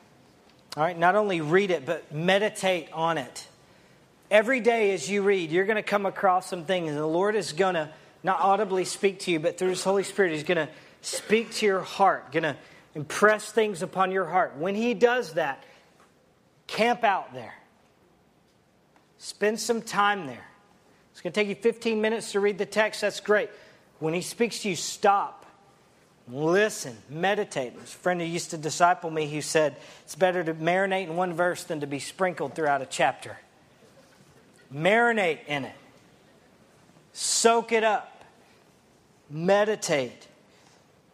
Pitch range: 165-205 Hz